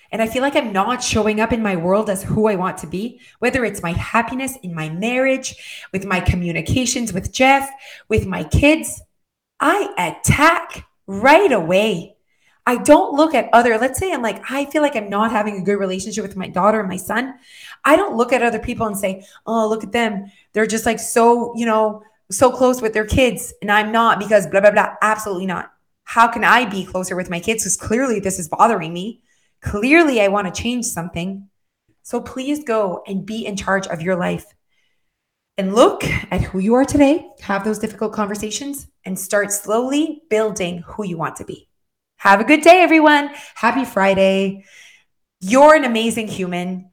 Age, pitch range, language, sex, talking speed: 20-39, 195-245 Hz, English, female, 195 wpm